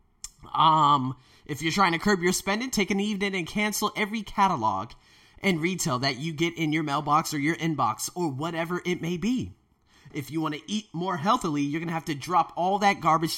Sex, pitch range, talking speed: male, 135-195 Hz, 210 wpm